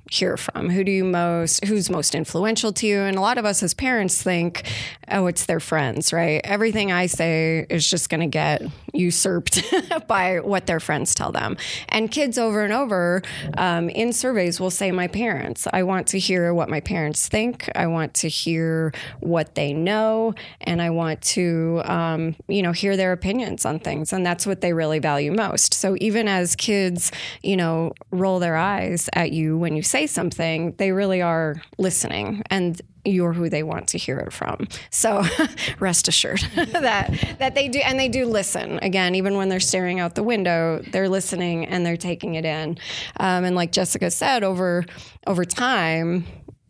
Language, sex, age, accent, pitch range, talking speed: English, female, 20-39, American, 165-195 Hz, 190 wpm